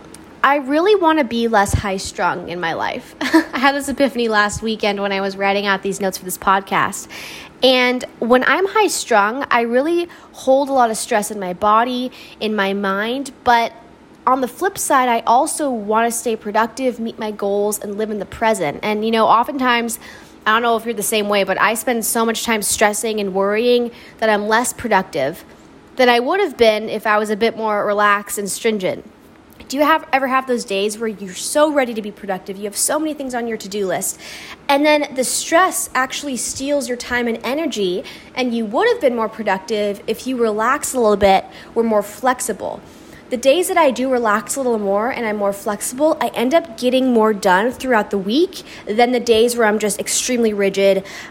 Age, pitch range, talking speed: 10-29, 205-260 Hz, 210 wpm